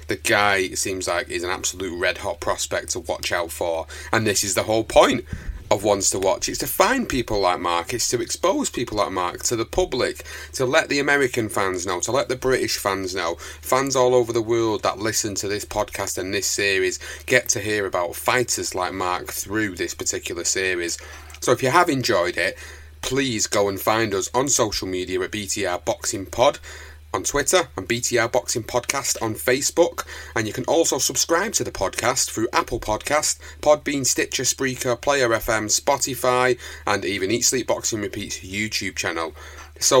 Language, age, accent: English, 30-49, British